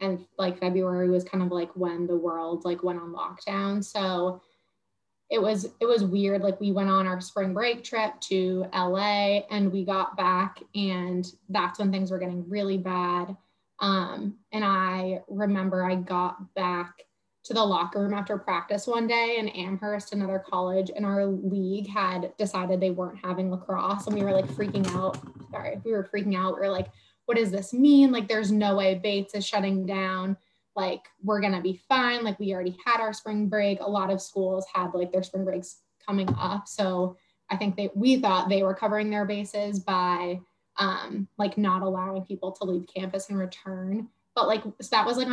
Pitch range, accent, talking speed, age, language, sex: 185-210 Hz, American, 195 wpm, 20-39, English, female